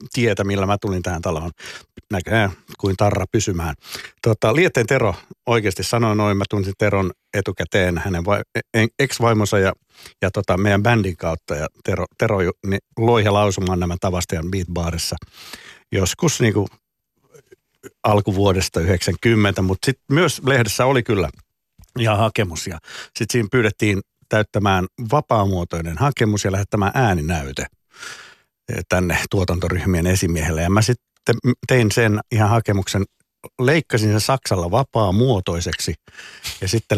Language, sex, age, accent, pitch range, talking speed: Finnish, male, 60-79, native, 90-115 Hz, 125 wpm